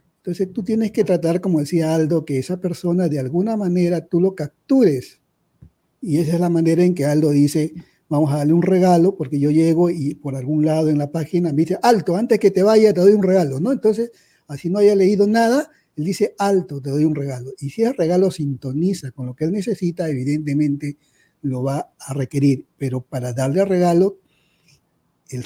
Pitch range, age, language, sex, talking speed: 145-195 Hz, 50-69, Spanish, male, 205 wpm